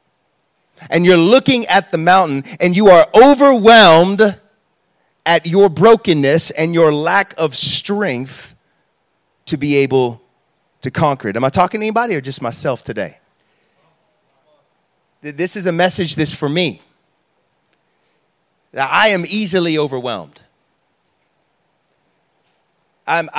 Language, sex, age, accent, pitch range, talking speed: English, male, 30-49, American, 135-180 Hz, 120 wpm